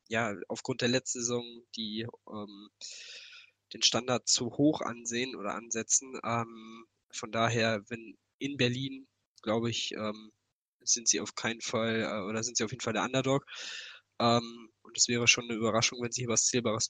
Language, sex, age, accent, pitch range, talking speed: German, male, 20-39, German, 110-125 Hz, 175 wpm